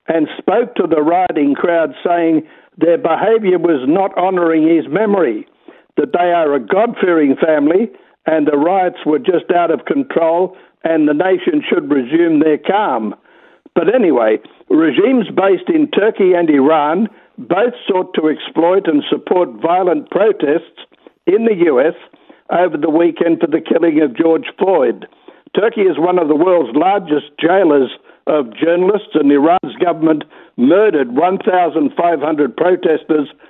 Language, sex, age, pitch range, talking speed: English, male, 60-79, 160-235 Hz, 140 wpm